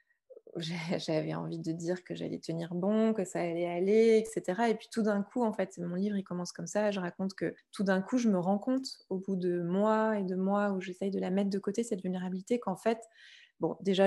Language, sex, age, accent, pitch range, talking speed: French, female, 20-39, French, 185-220 Hz, 240 wpm